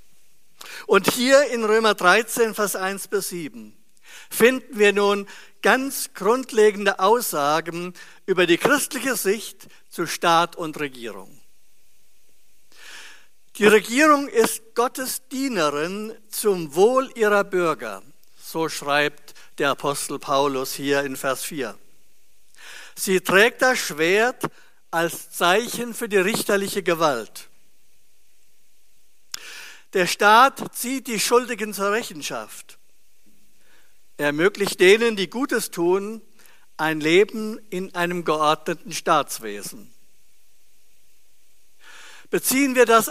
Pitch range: 170-230 Hz